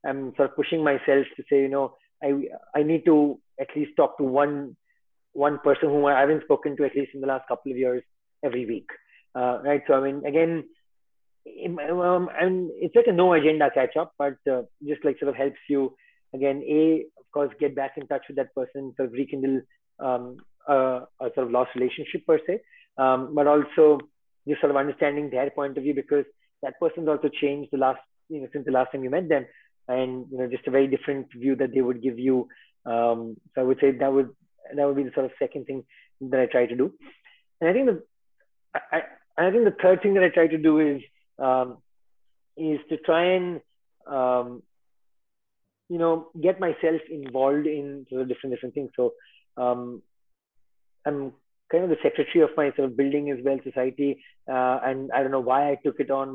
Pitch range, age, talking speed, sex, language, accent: 130-155 Hz, 30-49, 215 wpm, male, English, Indian